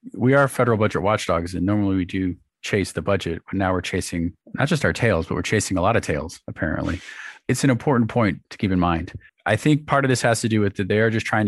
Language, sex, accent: English, male, American